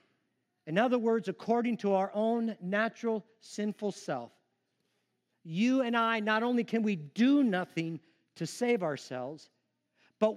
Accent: American